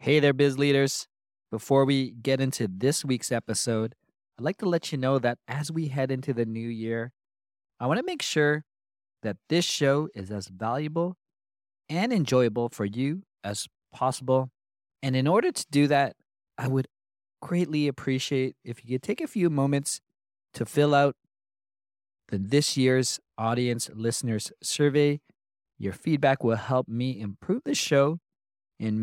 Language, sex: English, male